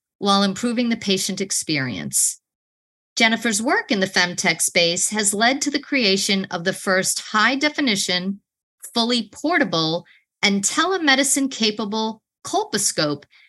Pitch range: 185-245 Hz